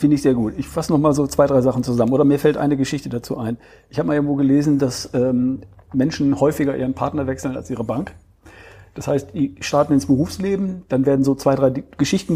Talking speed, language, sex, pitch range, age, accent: 230 wpm, German, male, 135-155 Hz, 40-59, German